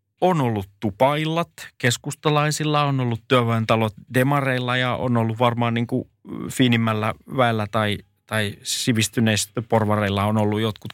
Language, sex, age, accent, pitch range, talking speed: Finnish, male, 30-49, native, 100-125 Hz, 120 wpm